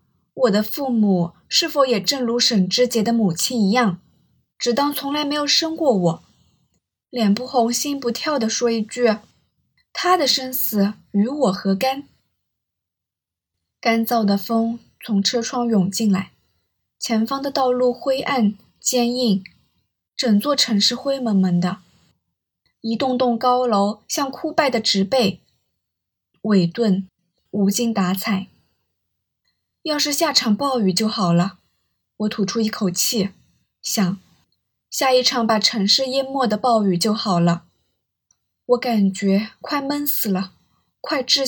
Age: 20-39